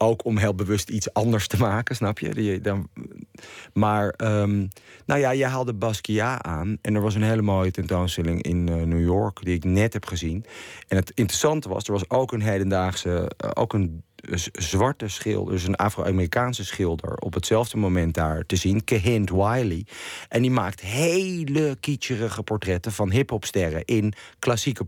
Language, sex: Dutch, male